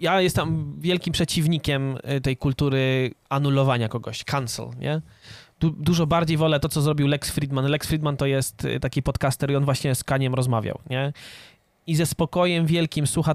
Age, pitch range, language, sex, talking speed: 20-39, 135-165 Hz, Polish, male, 165 wpm